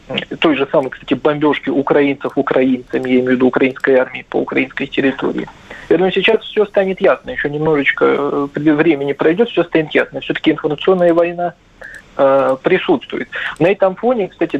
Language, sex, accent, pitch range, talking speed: Russian, male, native, 135-160 Hz, 145 wpm